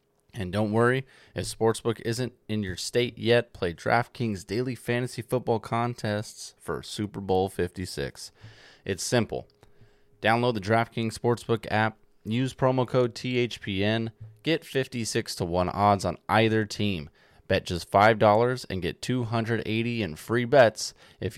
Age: 20-39